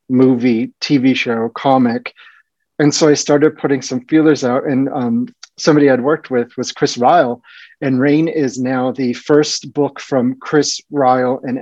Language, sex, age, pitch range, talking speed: English, male, 30-49, 125-155 Hz, 165 wpm